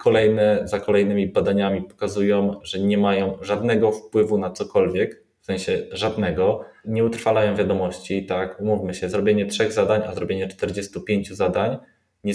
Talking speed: 140 wpm